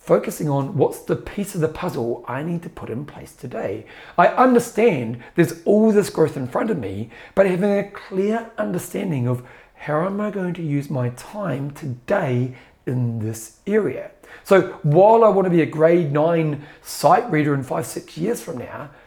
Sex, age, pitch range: male, 30-49, 130-190 Hz